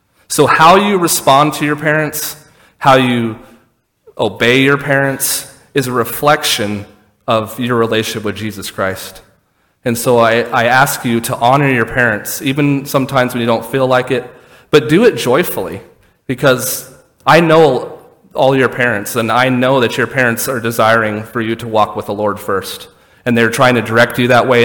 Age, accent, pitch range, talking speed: 30-49, American, 110-135 Hz, 180 wpm